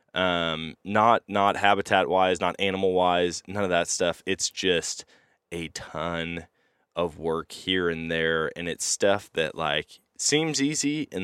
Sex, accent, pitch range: male, American, 80-100 Hz